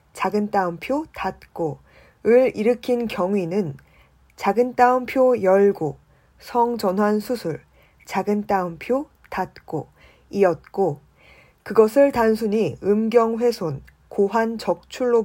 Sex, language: female, Korean